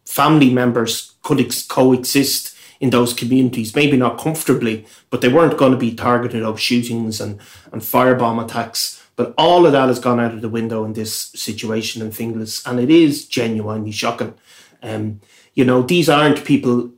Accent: Irish